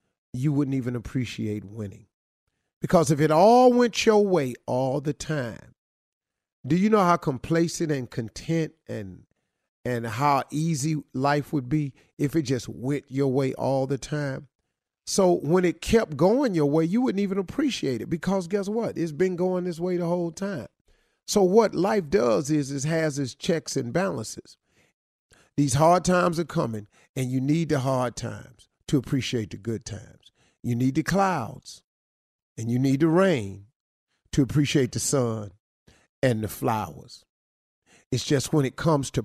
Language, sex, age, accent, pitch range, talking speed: English, male, 40-59, American, 120-170 Hz, 170 wpm